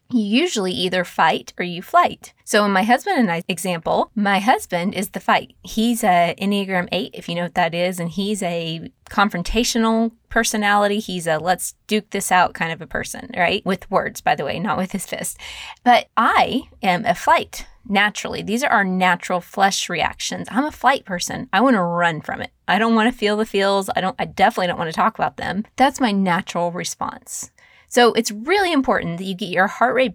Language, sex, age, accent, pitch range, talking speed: English, female, 20-39, American, 185-240 Hz, 215 wpm